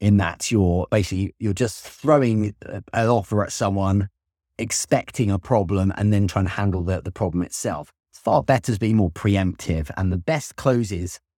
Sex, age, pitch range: male, 30-49, 90-115 Hz